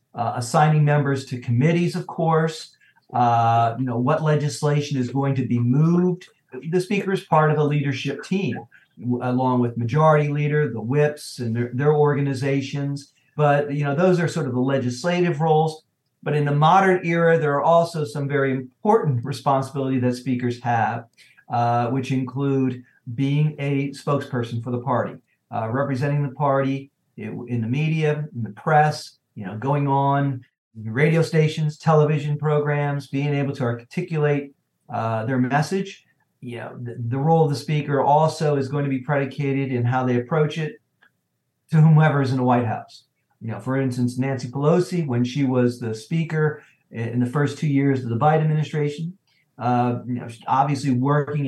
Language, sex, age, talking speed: English, male, 50-69, 170 wpm